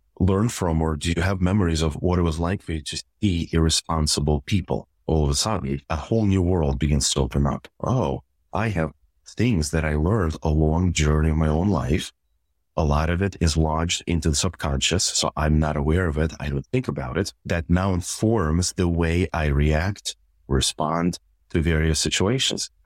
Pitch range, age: 75-95 Hz, 30-49